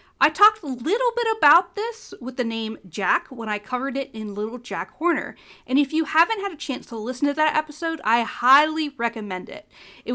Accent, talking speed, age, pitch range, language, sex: American, 215 wpm, 40-59, 215-305 Hz, English, female